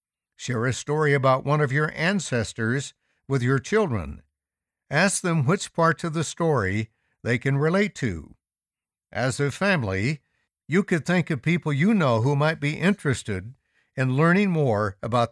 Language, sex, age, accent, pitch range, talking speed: English, male, 60-79, American, 110-165 Hz, 155 wpm